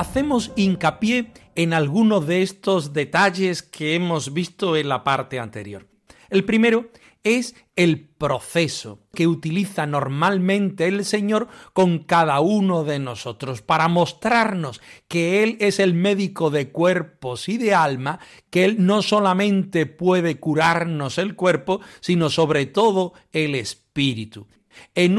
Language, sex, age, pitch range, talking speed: Spanish, male, 40-59, 150-200 Hz, 130 wpm